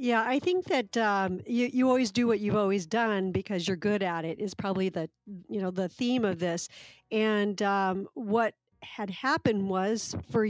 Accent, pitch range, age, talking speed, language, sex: American, 195-235 Hz, 50-69, 195 wpm, English, female